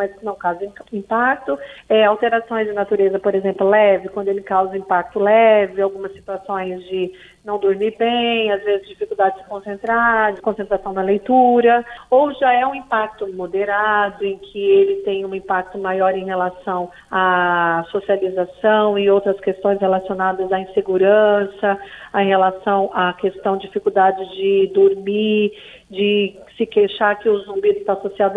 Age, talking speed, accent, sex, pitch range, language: 40-59, 145 wpm, Brazilian, female, 195-265 Hz, Portuguese